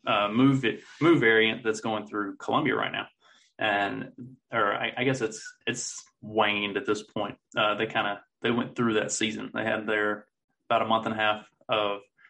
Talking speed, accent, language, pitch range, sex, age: 200 wpm, American, English, 105-130 Hz, male, 20-39